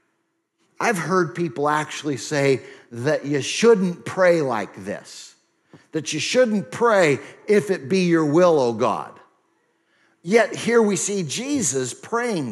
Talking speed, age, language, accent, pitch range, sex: 135 wpm, 50-69, English, American, 120-200 Hz, male